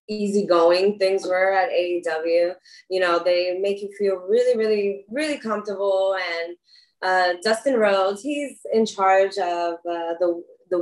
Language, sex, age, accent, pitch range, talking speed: English, female, 20-39, American, 180-230 Hz, 145 wpm